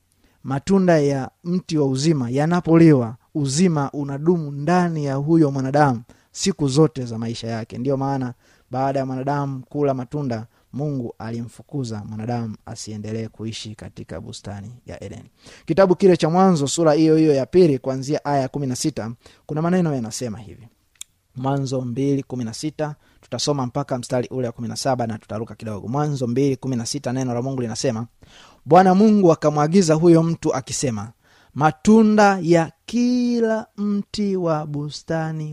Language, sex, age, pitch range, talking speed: Swahili, male, 30-49, 125-165 Hz, 130 wpm